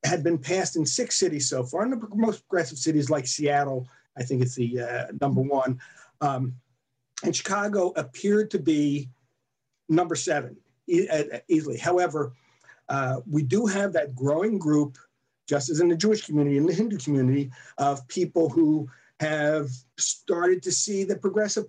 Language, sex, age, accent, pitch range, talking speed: English, male, 50-69, American, 140-200 Hz, 165 wpm